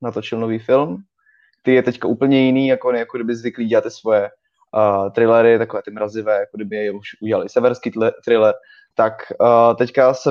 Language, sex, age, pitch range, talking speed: Czech, male, 20-39, 110-130 Hz, 190 wpm